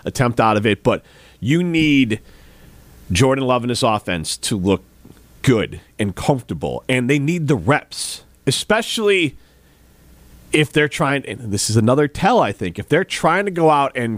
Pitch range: 115-155 Hz